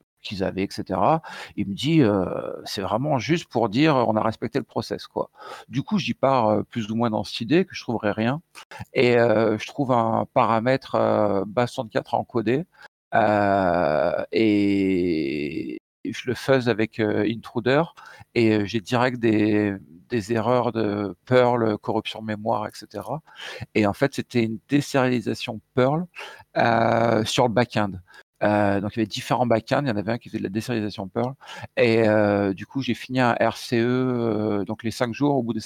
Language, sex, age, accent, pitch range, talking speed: French, male, 50-69, French, 105-125 Hz, 180 wpm